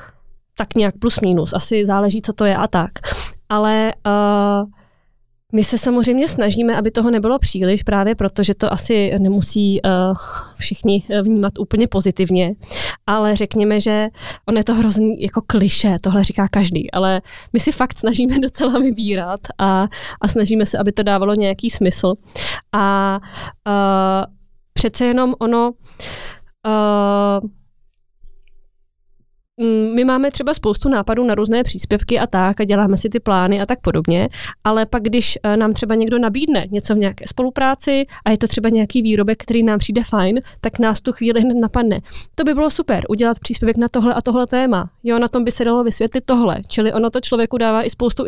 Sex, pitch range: female, 200-235 Hz